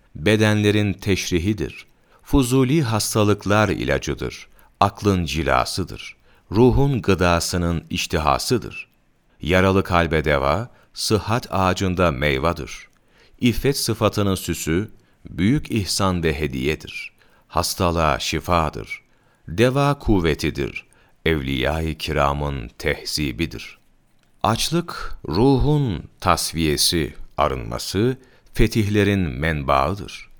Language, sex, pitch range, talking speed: Turkish, male, 80-110 Hz, 70 wpm